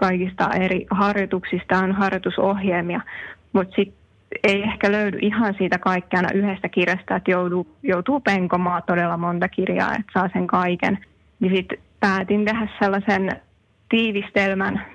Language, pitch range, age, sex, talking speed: Finnish, 180-200 Hz, 20-39, female, 125 wpm